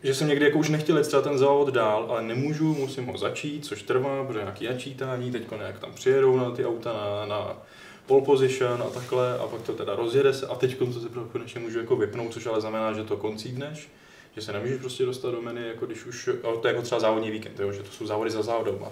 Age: 20-39